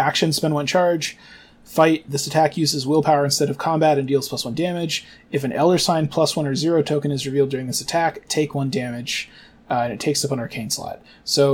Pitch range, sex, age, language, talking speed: 135-155 Hz, male, 20-39, English, 225 wpm